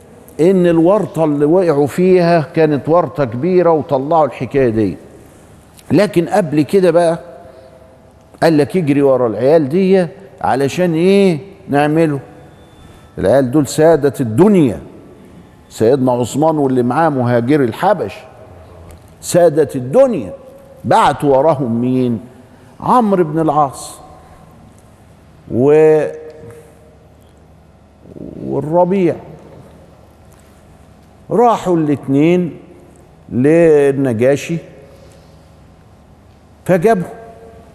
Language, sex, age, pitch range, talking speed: Arabic, male, 50-69, 110-165 Hz, 75 wpm